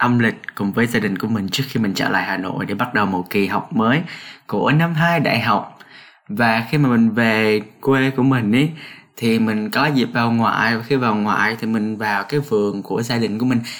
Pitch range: 115-140 Hz